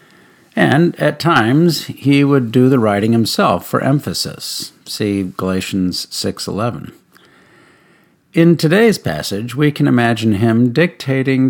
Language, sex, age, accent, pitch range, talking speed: English, male, 50-69, American, 110-150 Hz, 115 wpm